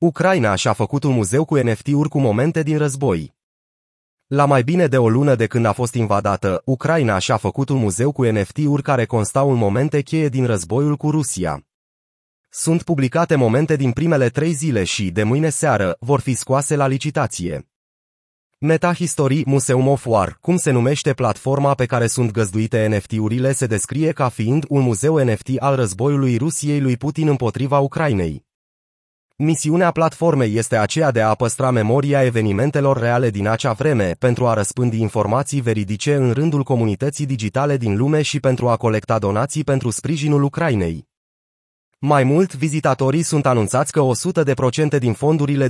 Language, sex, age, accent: Romanian, male, 30-49, native